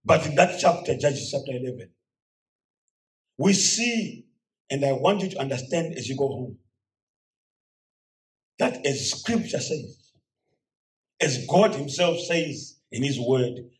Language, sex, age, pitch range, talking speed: English, male, 50-69, 115-190 Hz, 130 wpm